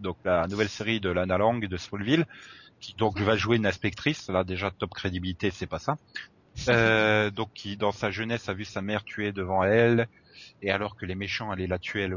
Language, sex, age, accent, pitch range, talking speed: French, male, 30-49, French, 90-110 Hz, 215 wpm